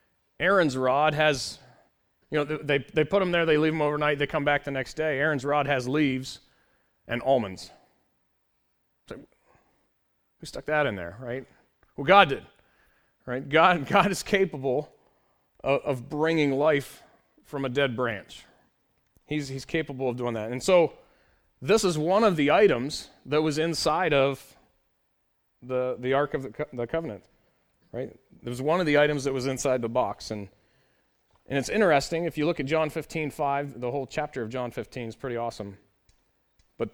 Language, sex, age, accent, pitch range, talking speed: English, male, 30-49, American, 130-165 Hz, 170 wpm